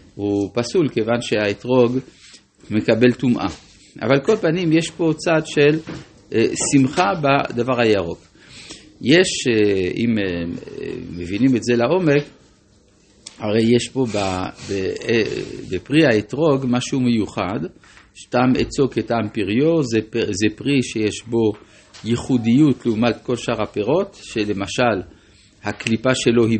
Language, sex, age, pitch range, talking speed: Hebrew, male, 50-69, 105-130 Hz, 120 wpm